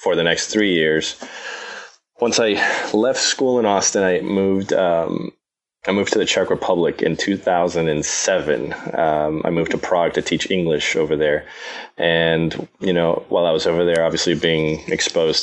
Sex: male